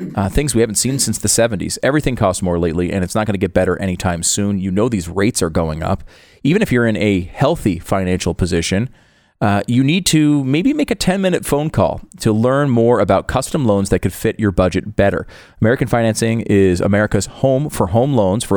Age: 30-49